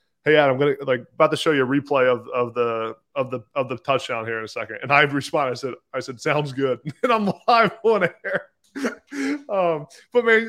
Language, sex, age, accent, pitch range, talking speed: English, male, 20-39, American, 120-145 Hz, 230 wpm